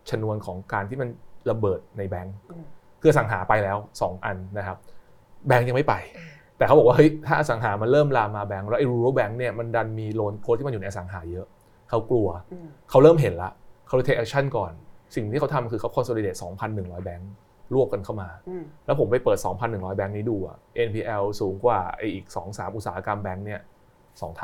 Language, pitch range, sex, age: Thai, 100-130 Hz, male, 20-39